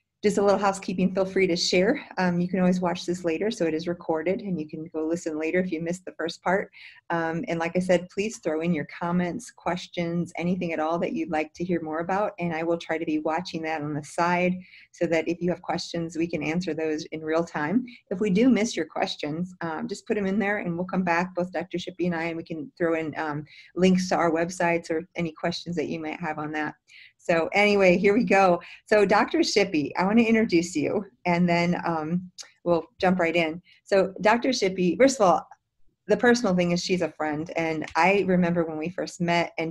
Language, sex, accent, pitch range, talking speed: English, female, American, 165-185 Hz, 235 wpm